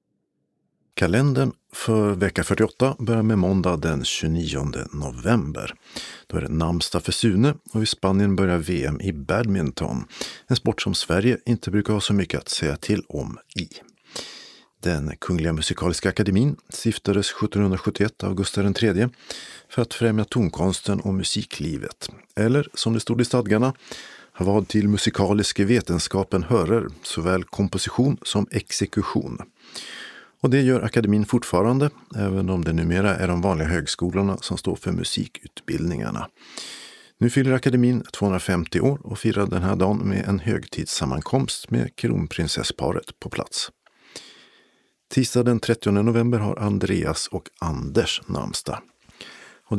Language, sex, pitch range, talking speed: Swedish, male, 95-115 Hz, 135 wpm